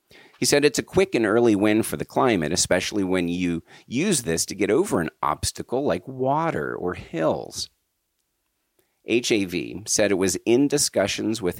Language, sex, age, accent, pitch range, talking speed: English, male, 40-59, American, 85-120 Hz, 165 wpm